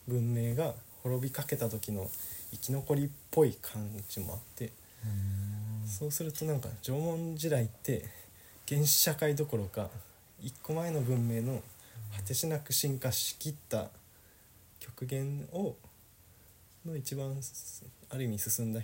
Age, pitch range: 20-39, 100-130 Hz